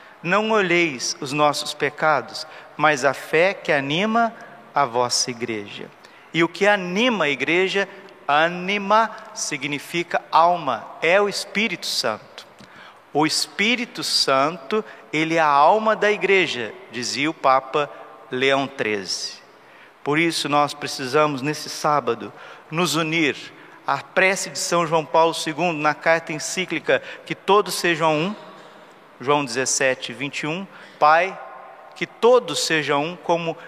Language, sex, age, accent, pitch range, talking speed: Portuguese, male, 50-69, Brazilian, 150-195 Hz, 125 wpm